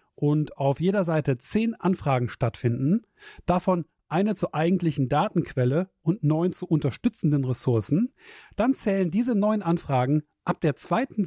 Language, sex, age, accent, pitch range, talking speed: German, male, 40-59, German, 140-195 Hz, 135 wpm